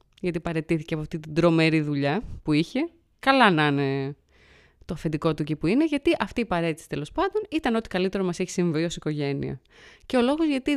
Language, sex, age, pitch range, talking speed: Greek, female, 20-39, 160-230 Hz, 200 wpm